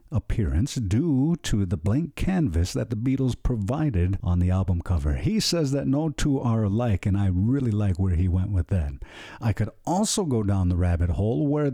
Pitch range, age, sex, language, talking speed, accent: 95-140 Hz, 50-69, male, English, 200 wpm, American